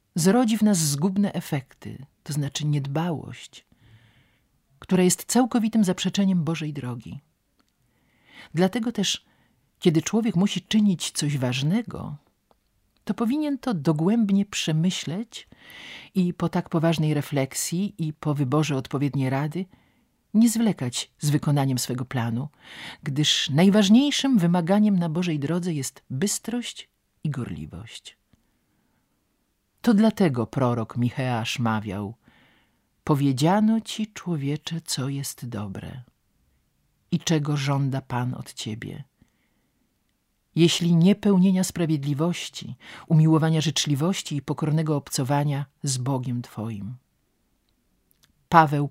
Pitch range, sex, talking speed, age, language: 130-185 Hz, male, 100 wpm, 50-69, Polish